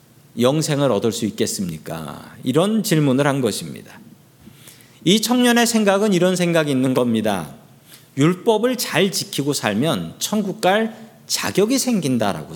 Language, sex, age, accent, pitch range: Korean, male, 40-59, native, 135-200 Hz